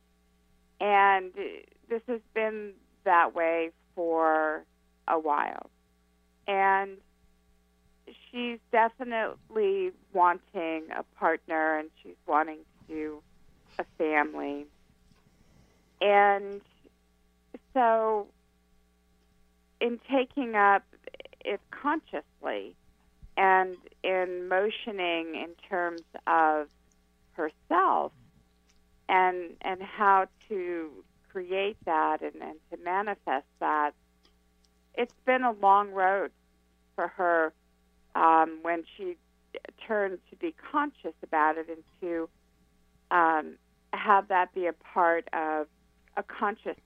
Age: 50-69